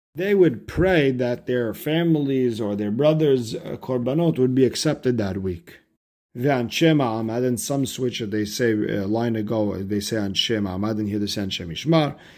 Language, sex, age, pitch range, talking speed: English, male, 40-59, 110-135 Hz, 170 wpm